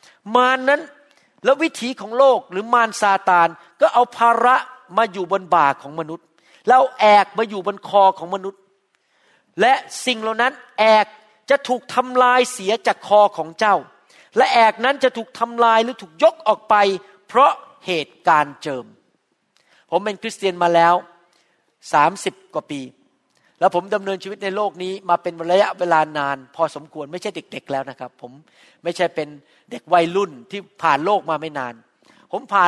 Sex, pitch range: male, 175-240 Hz